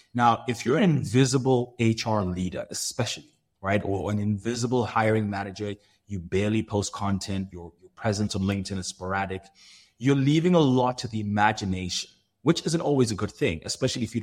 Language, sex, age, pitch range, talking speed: English, male, 30-49, 100-125 Hz, 175 wpm